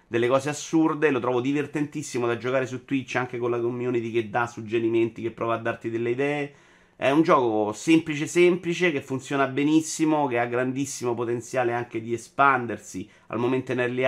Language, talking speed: Italian, 180 wpm